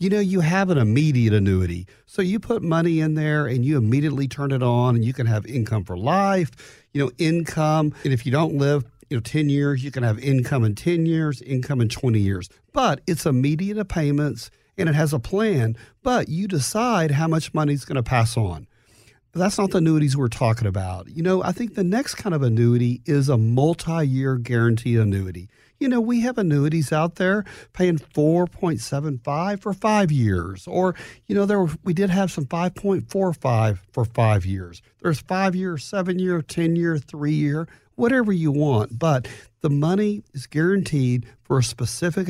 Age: 40-59